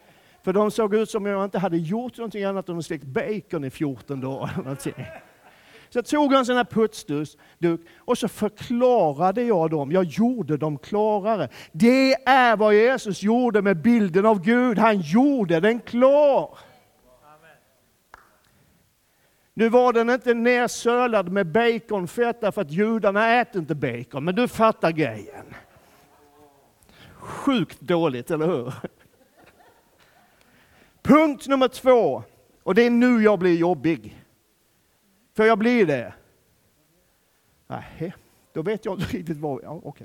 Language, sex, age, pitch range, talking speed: Swedish, male, 50-69, 165-235 Hz, 140 wpm